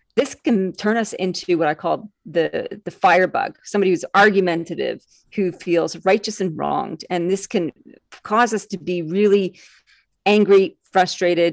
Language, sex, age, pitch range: English, female, 40-59, 170-205 Hz